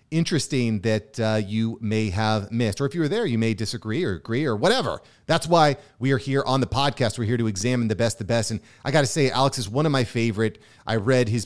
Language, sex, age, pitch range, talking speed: English, male, 30-49, 115-140 Hz, 255 wpm